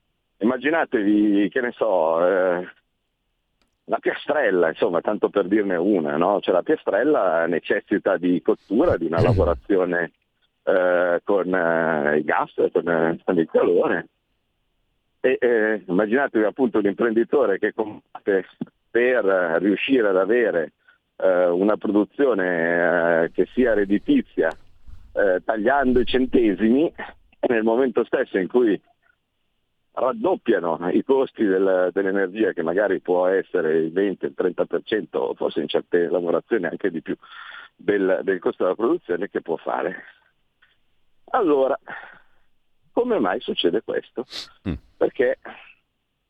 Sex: male